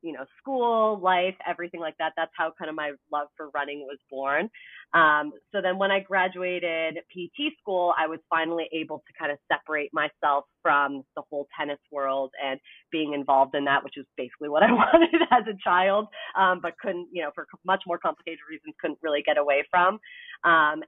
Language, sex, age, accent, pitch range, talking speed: English, female, 30-49, American, 145-180 Hz, 195 wpm